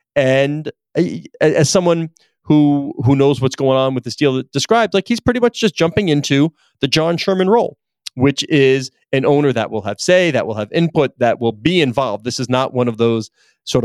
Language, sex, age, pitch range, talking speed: English, male, 30-49, 120-160 Hz, 210 wpm